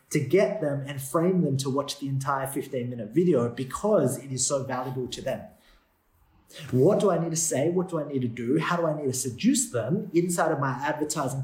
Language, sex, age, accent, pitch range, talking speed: English, male, 30-49, Australian, 135-180 Hz, 225 wpm